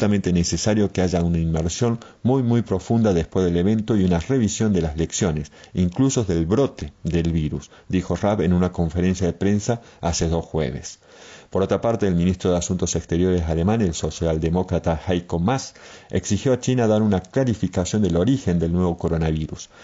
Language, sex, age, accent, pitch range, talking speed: Spanish, male, 40-59, Argentinian, 85-110 Hz, 170 wpm